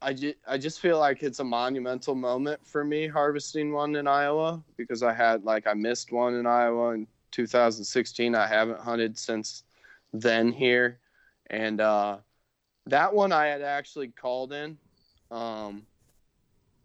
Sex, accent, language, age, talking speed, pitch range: male, American, English, 20-39, 150 wpm, 110-130 Hz